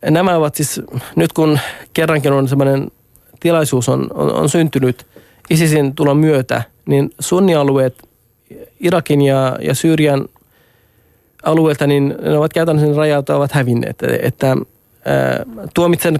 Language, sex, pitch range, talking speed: Finnish, male, 125-155 Hz, 120 wpm